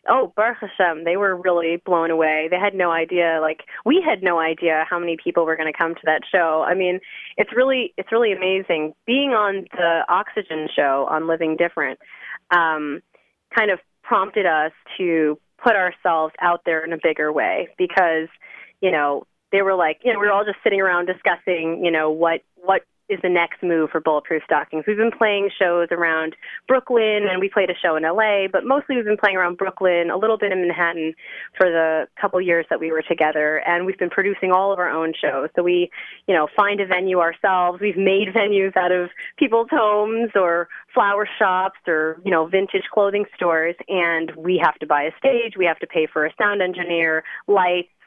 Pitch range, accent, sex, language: 160-200 Hz, American, female, English